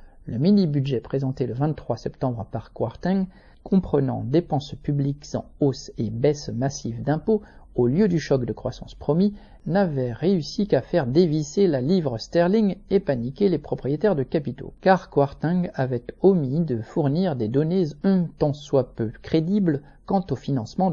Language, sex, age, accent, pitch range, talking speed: French, male, 50-69, French, 130-175 Hz, 155 wpm